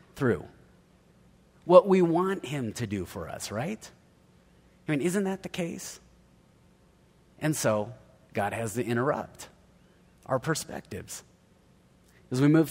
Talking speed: 125 wpm